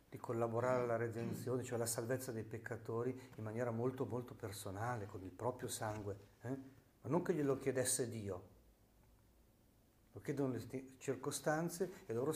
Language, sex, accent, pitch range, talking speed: Italian, male, native, 110-145 Hz, 150 wpm